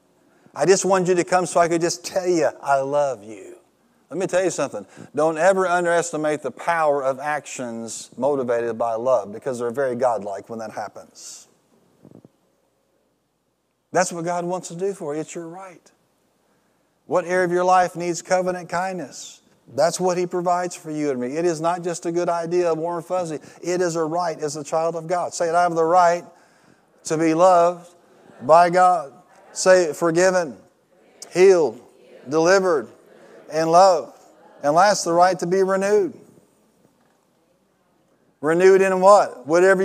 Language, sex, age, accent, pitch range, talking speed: English, male, 40-59, American, 160-195 Hz, 165 wpm